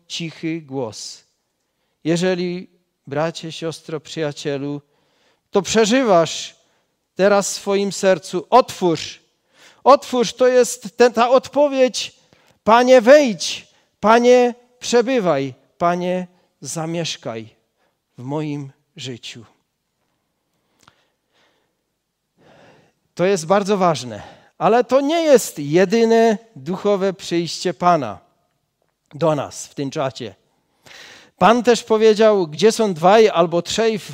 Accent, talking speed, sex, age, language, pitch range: Polish, 95 wpm, male, 40-59, Czech, 160-220 Hz